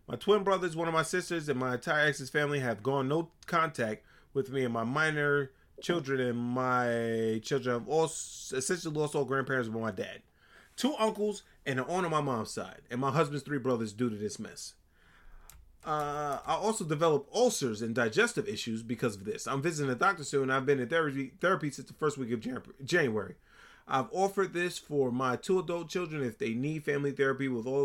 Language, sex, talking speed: English, male, 205 wpm